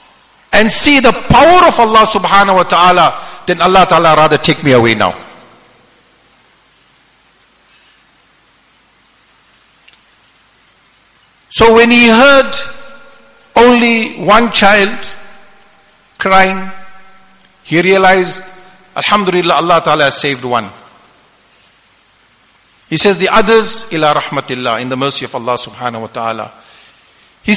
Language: English